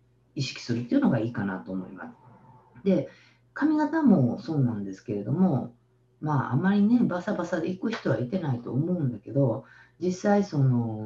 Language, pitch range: Japanese, 120-185 Hz